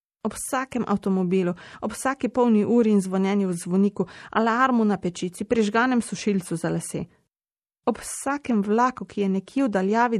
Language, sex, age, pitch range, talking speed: Italian, female, 30-49, 185-230 Hz, 155 wpm